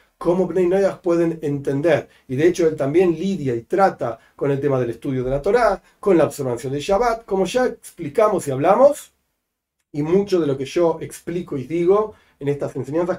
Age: 40-59